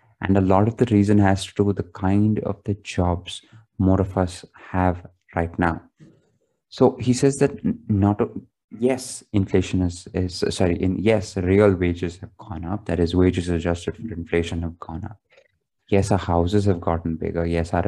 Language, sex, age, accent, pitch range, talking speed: English, male, 20-39, Indian, 85-105 Hz, 185 wpm